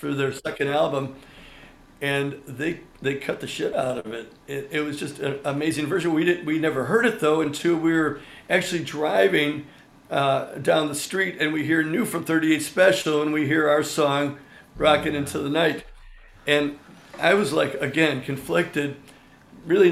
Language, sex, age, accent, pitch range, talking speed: English, male, 50-69, American, 140-155 Hz, 180 wpm